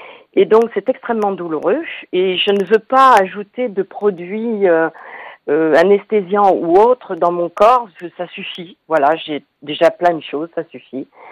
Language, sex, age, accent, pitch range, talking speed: French, female, 50-69, French, 170-240 Hz, 170 wpm